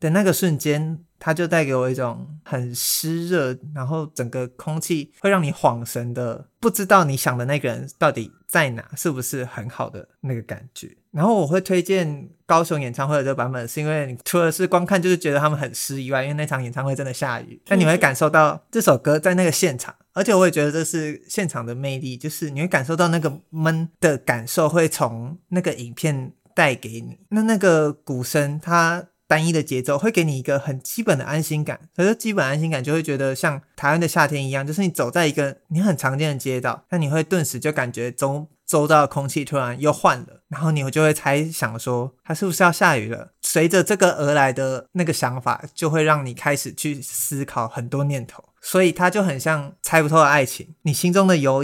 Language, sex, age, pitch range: Chinese, male, 30-49, 135-170 Hz